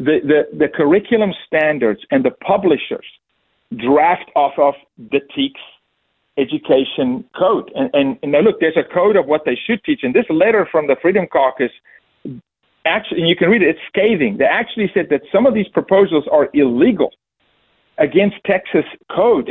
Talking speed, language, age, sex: 170 wpm, English, 50-69, male